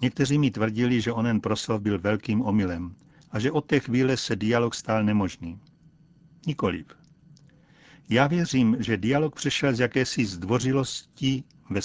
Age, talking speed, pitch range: 60-79, 140 wpm, 110-150 Hz